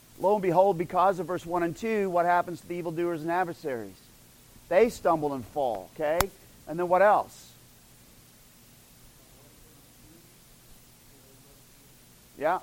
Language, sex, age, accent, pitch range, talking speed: English, male, 40-59, American, 145-195 Hz, 125 wpm